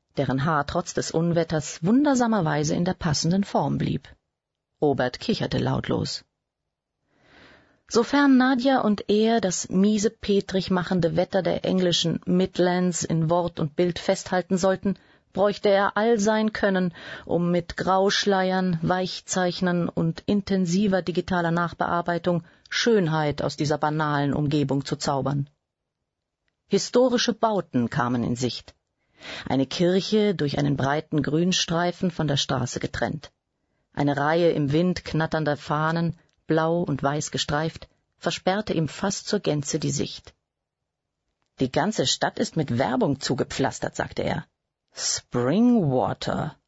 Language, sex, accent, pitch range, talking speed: German, female, German, 150-195 Hz, 120 wpm